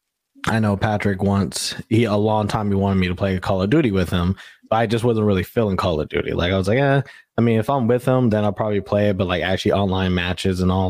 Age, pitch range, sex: 20-39, 95-110 Hz, male